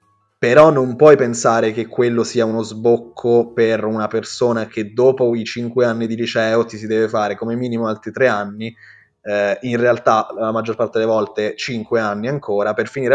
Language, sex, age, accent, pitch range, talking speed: Italian, male, 20-39, native, 105-115 Hz, 185 wpm